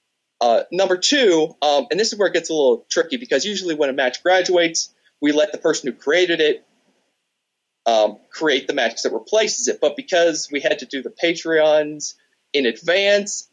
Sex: male